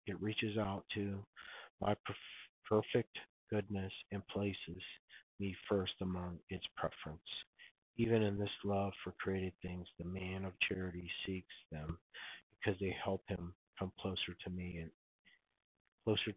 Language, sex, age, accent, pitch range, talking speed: English, male, 50-69, American, 90-105 Hz, 135 wpm